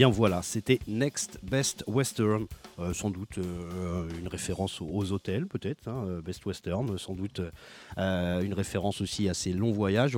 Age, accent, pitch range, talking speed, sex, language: 30-49, French, 95-115 Hz, 160 wpm, male, French